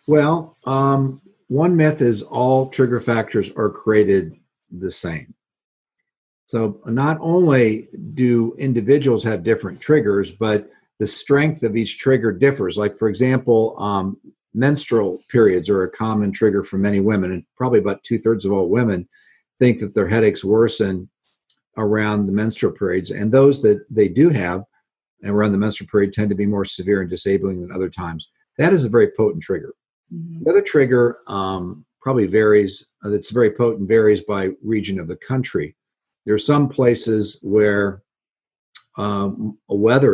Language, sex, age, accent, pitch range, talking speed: English, male, 50-69, American, 100-130 Hz, 155 wpm